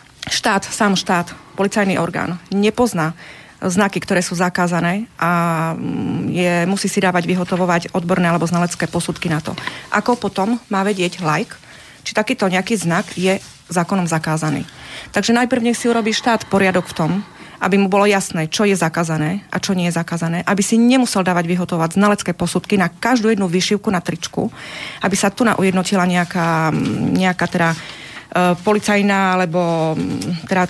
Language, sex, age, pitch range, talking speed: Slovak, female, 30-49, 175-205 Hz, 155 wpm